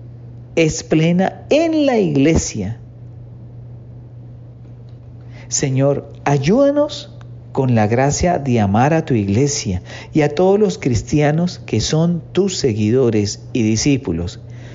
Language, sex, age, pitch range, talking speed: English, male, 50-69, 120-155 Hz, 105 wpm